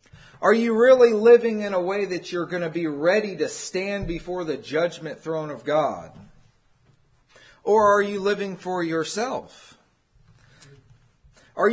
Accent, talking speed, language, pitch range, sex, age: American, 145 wpm, English, 165-230 Hz, male, 40-59